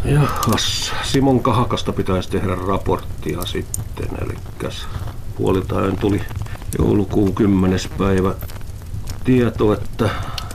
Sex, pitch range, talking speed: male, 95-110 Hz, 85 wpm